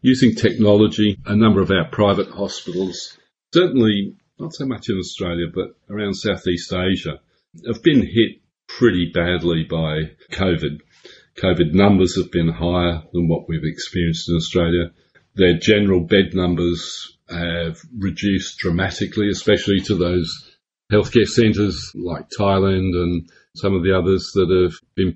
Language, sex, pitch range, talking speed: English, male, 85-100 Hz, 140 wpm